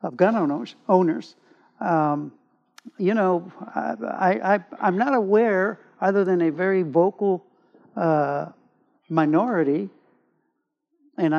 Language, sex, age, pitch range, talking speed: English, male, 60-79, 170-220 Hz, 110 wpm